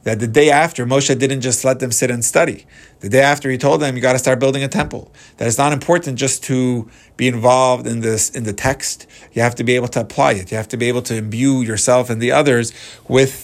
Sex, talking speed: male, 260 wpm